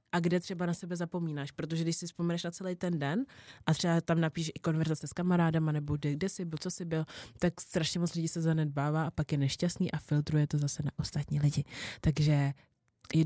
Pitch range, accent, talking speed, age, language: 145-160 Hz, native, 220 wpm, 20-39, Czech